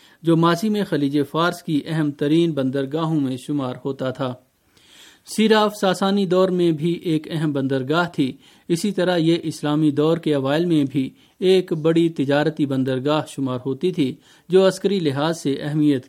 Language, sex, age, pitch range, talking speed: Urdu, male, 40-59, 140-175 Hz, 160 wpm